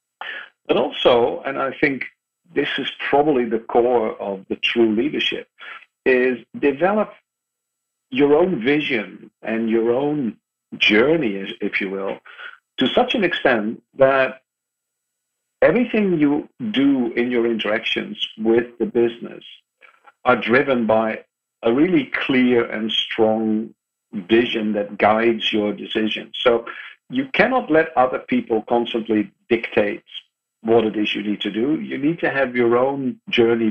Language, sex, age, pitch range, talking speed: English, male, 50-69, 110-125 Hz, 135 wpm